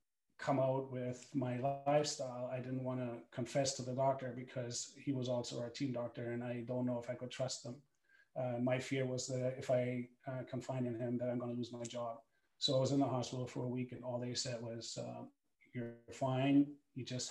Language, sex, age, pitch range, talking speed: English, male, 30-49, 120-130 Hz, 230 wpm